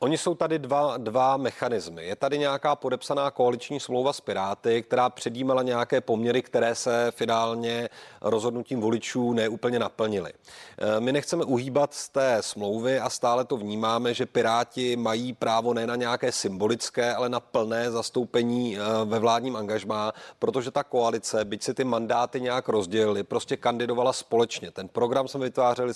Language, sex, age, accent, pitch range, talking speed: Czech, male, 30-49, native, 115-130 Hz, 155 wpm